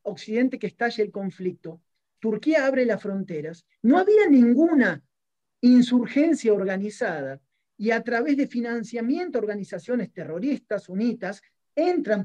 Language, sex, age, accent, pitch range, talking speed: Spanish, male, 40-59, Argentinian, 190-240 Hz, 115 wpm